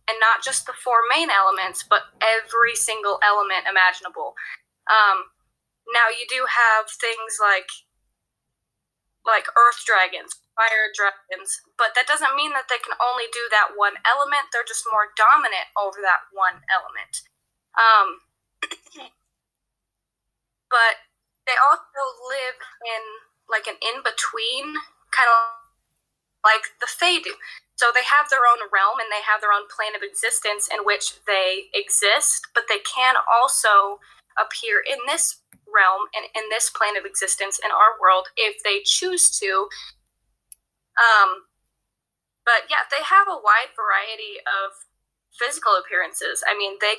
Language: English